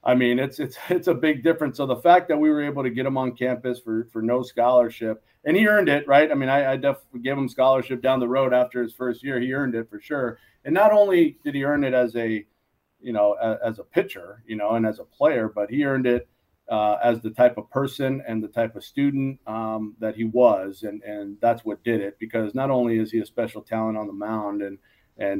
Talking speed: 255 wpm